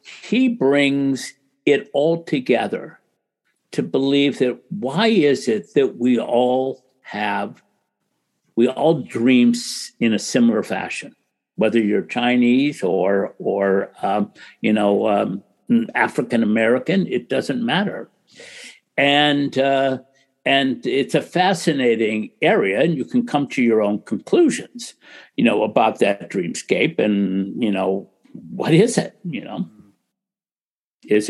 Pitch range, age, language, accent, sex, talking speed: 120-185 Hz, 60-79, English, American, male, 125 wpm